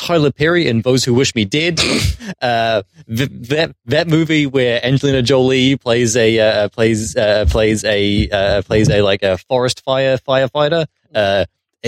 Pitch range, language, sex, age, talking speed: 110-135 Hz, English, male, 20-39, 160 wpm